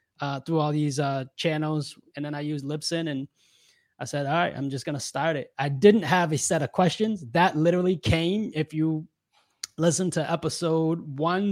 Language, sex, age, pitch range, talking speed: English, male, 20-39, 140-165 Hz, 195 wpm